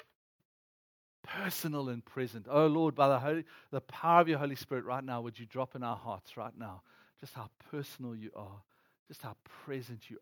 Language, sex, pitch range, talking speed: English, male, 120-160 Hz, 190 wpm